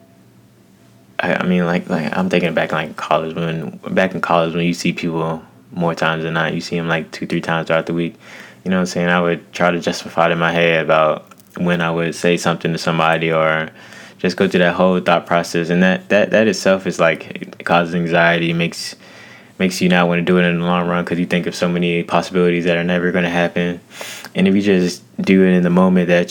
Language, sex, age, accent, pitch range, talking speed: English, male, 20-39, American, 85-90 Hz, 240 wpm